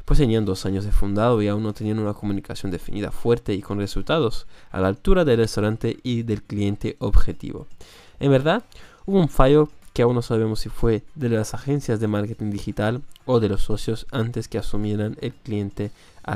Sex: male